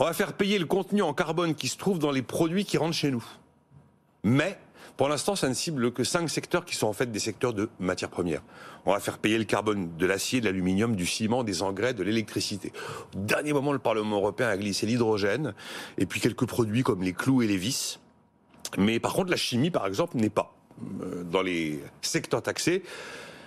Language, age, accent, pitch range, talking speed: French, 40-59, French, 110-170 Hz, 215 wpm